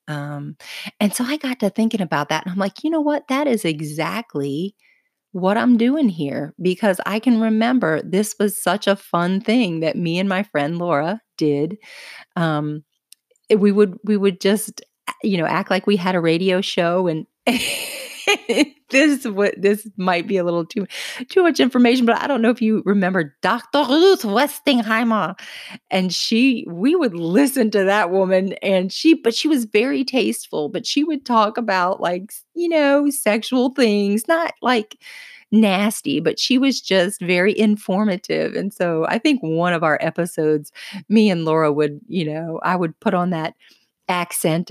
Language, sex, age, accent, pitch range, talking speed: English, female, 30-49, American, 175-240 Hz, 175 wpm